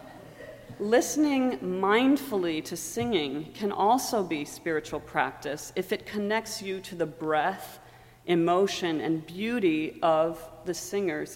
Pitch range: 160-205 Hz